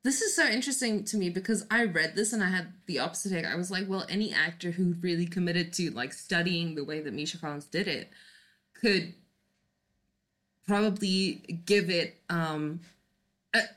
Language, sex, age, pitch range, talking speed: English, female, 20-39, 170-210 Hz, 170 wpm